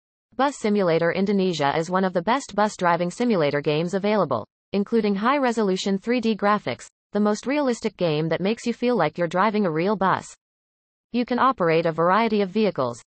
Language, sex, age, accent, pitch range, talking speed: English, female, 30-49, American, 170-230 Hz, 175 wpm